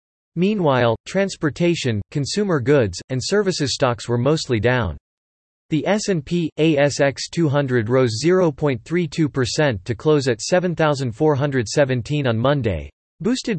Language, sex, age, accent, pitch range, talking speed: English, male, 40-59, American, 120-160 Hz, 100 wpm